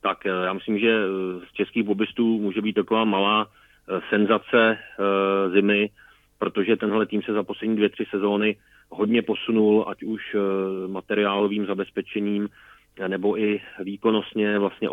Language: Czech